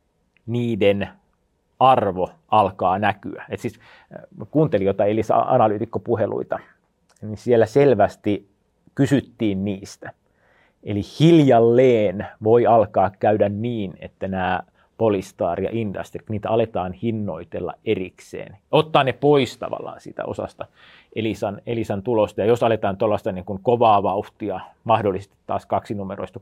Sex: male